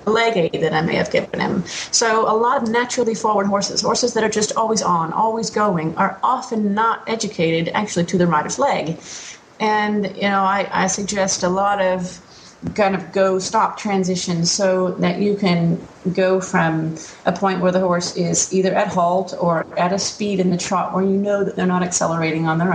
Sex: female